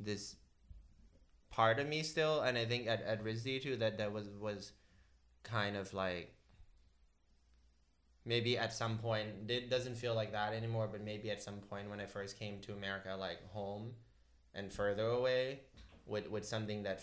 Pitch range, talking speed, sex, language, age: 100-120 Hz, 175 wpm, male, English, 20-39